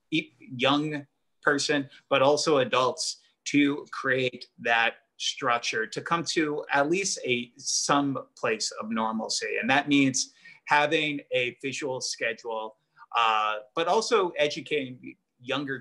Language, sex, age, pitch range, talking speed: English, male, 30-49, 120-160 Hz, 120 wpm